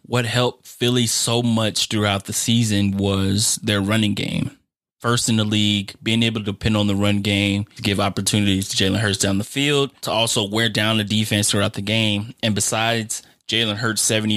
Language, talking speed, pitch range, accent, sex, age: English, 195 wpm, 100-115 Hz, American, male, 20-39